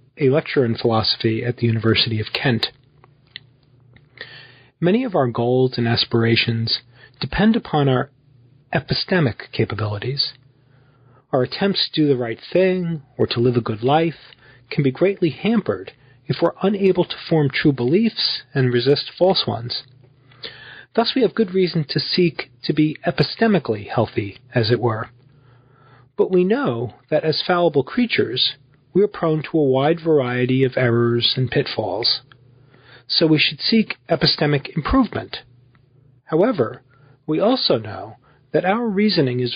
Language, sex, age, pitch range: English, male, 40-59, 125-175 Hz